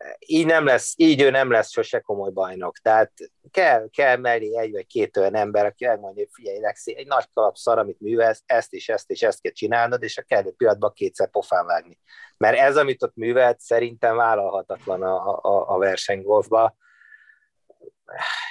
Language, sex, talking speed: Hungarian, male, 175 wpm